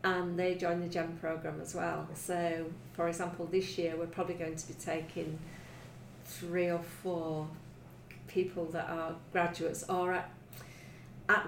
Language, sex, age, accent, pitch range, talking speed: English, female, 40-59, British, 165-185 Hz, 145 wpm